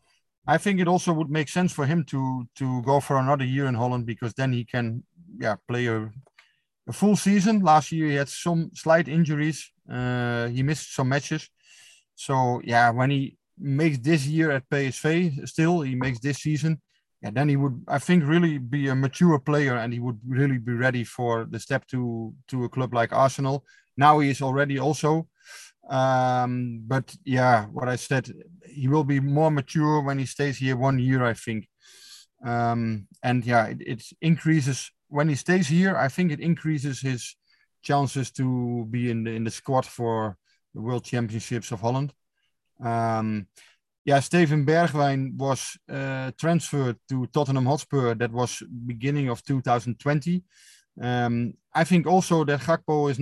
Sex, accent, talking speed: male, Dutch, 175 wpm